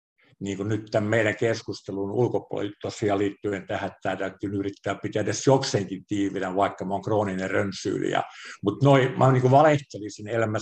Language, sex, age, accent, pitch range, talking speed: Finnish, male, 50-69, native, 100-130 Hz, 155 wpm